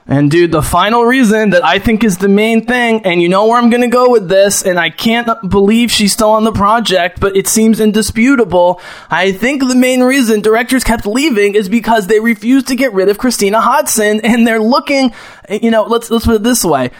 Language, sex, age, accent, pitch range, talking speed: English, male, 20-39, American, 180-230 Hz, 225 wpm